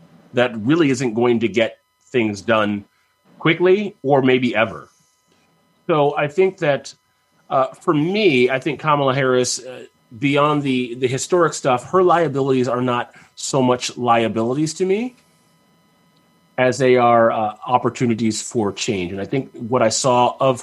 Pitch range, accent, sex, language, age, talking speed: 110-135 Hz, American, male, English, 30-49, 150 wpm